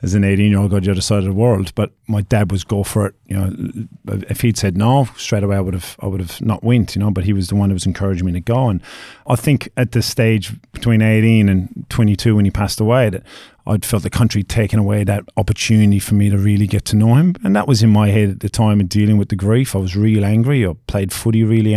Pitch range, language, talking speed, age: 100-115 Hz, English, 275 wpm, 30-49